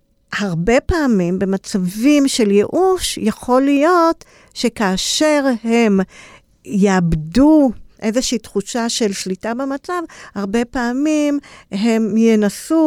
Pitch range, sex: 200-255 Hz, female